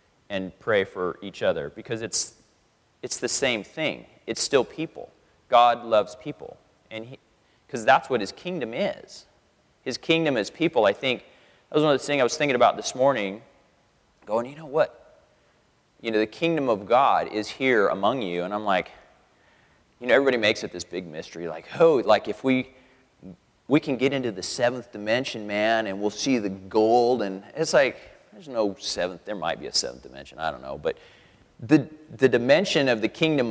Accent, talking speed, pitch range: American, 190 wpm, 110-145 Hz